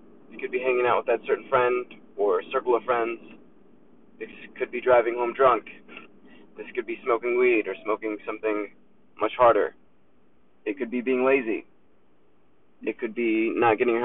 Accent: American